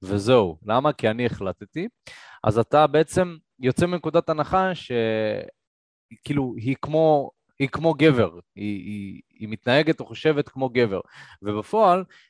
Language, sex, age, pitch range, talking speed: Hebrew, male, 20-39, 105-135 Hz, 120 wpm